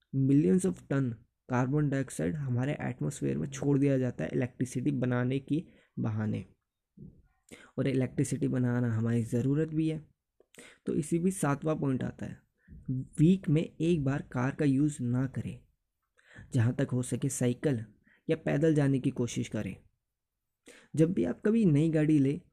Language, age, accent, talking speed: Hindi, 20-39, native, 150 wpm